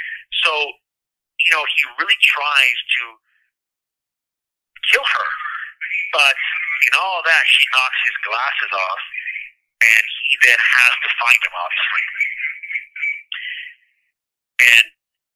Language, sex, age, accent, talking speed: English, male, 50-69, American, 105 wpm